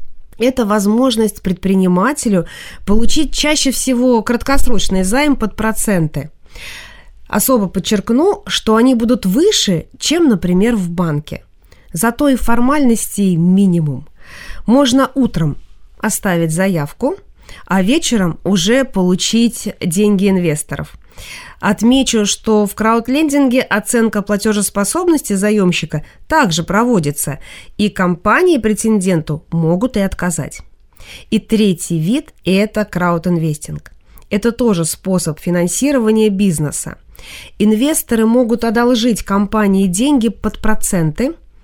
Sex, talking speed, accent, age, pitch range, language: female, 95 wpm, native, 20-39, 180-240 Hz, Russian